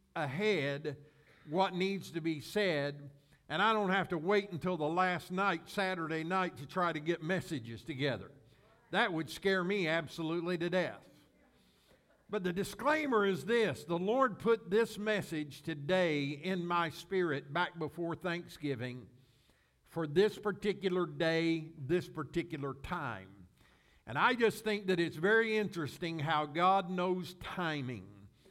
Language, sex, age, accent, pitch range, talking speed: English, male, 60-79, American, 150-195 Hz, 140 wpm